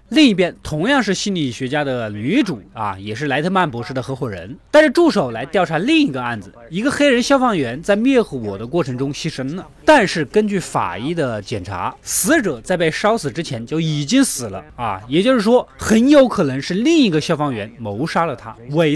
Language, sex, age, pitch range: Chinese, male, 20-39, 130-220 Hz